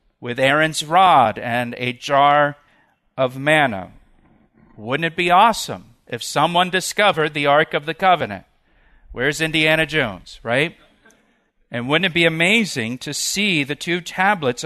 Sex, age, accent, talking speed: male, 50-69, American, 140 wpm